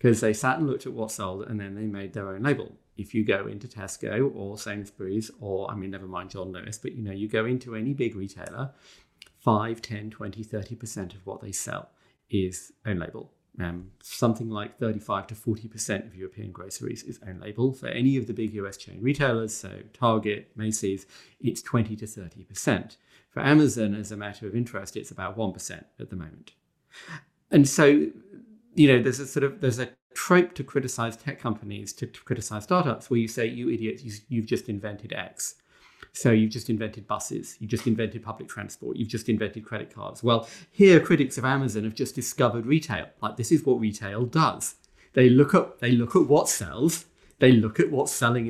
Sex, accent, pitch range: male, British, 105-125 Hz